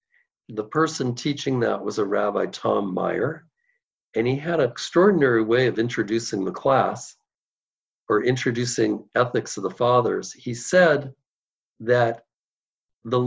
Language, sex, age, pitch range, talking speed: English, male, 50-69, 125-175 Hz, 130 wpm